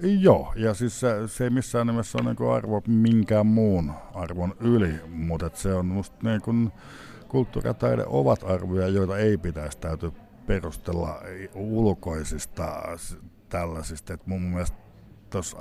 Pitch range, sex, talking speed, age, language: 80-105 Hz, male, 135 wpm, 60-79, Finnish